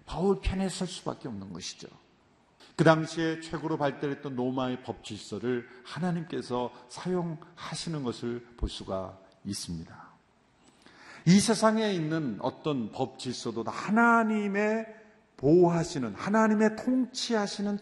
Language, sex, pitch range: Korean, male, 145-210 Hz